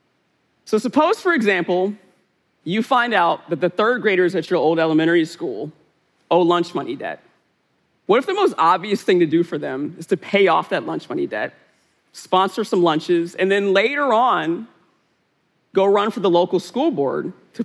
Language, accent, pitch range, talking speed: English, American, 165-225 Hz, 180 wpm